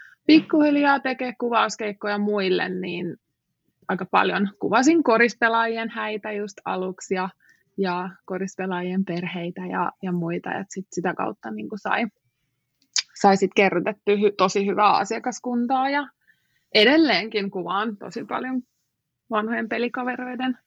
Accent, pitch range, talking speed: native, 190-245 Hz, 110 wpm